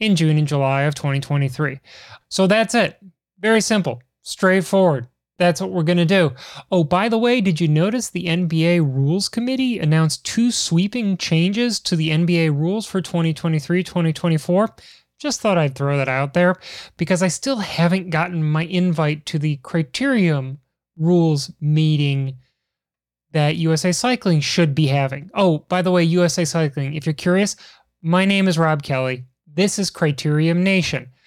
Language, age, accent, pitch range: English, 30-49, American, 145-180 Hz